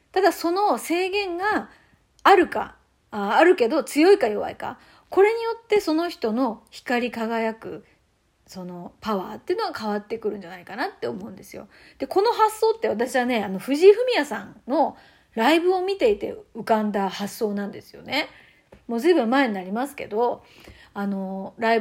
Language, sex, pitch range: Japanese, female, 225-350 Hz